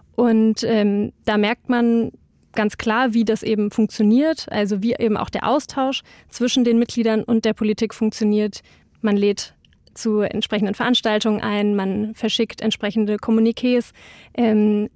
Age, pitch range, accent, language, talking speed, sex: 30-49, 215-240 Hz, German, German, 140 wpm, female